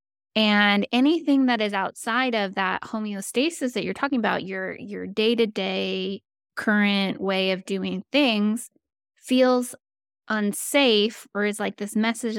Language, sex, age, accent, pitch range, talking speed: English, female, 20-39, American, 200-250 Hz, 140 wpm